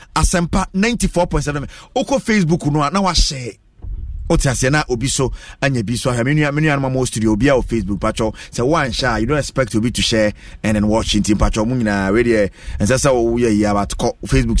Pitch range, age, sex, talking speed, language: 110-160 Hz, 30-49, male, 210 wpm, English